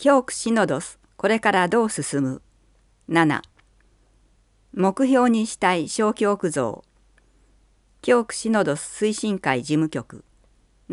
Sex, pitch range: female, 145-220 Hz